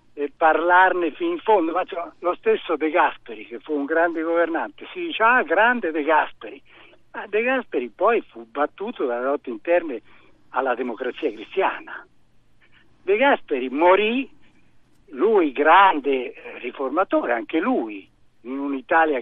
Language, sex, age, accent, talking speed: Italian, male, 60-79, native, 135 wpm